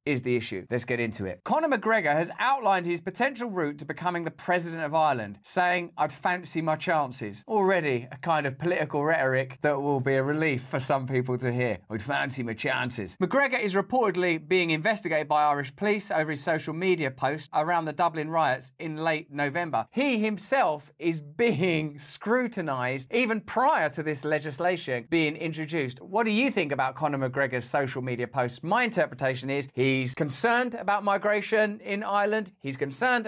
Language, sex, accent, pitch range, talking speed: English, male, British, 145-190 Hz, 180 wpm